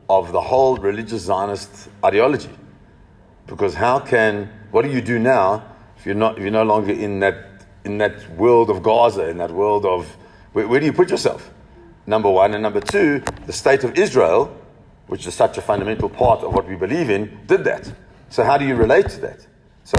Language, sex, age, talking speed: English, male, 40-59, 205 wpm